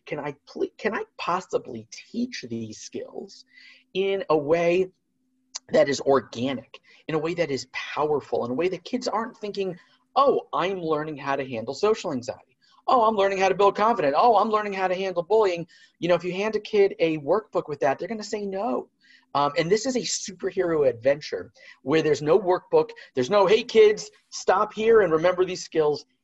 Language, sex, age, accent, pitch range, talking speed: English, male, 40-59, American, 150-225 Hz, 200 wpm